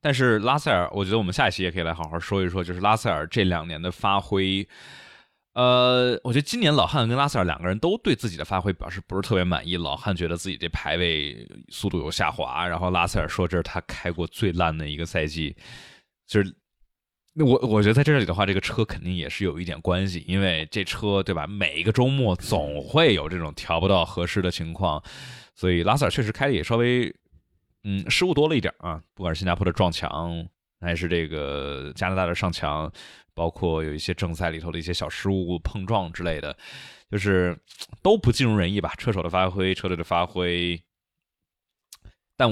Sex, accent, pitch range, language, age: male, native, 85-105 Hz, Chinese, 20-39